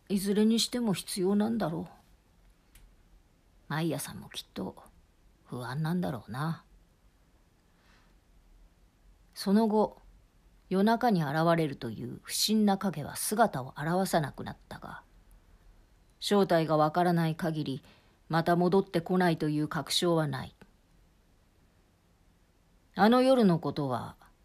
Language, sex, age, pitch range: Japanese, female, 40-59, 115-180 Hz